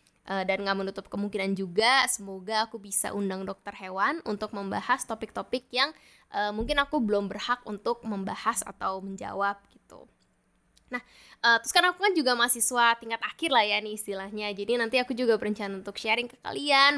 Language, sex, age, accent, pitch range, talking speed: Indonesian, female, 10-29, native, 200-235 Hz, 170 wpm